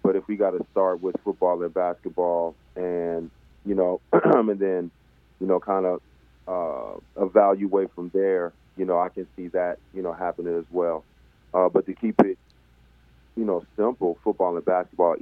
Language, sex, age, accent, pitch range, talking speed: English, male, 30-49, American, 75-95 Hz, 180 wpm